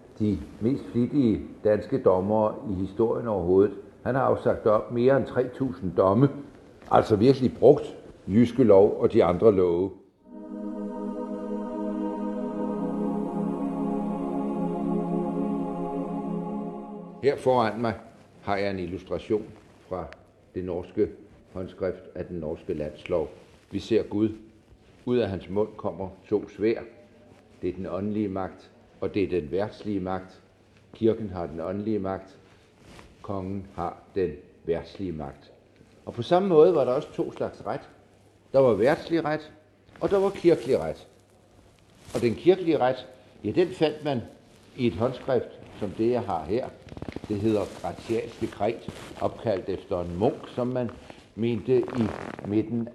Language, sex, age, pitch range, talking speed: Danish, male, 60-79, 95-120 Hz, 135 wpm